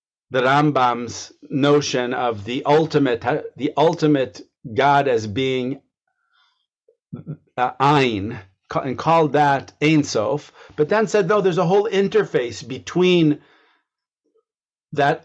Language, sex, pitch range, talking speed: English, male, 130-170 Hz, 105 wpm